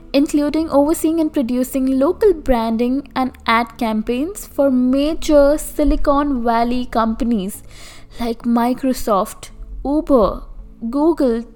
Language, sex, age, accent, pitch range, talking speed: English, female, 20-39, Indian, 240-300 Hz, 95 wpm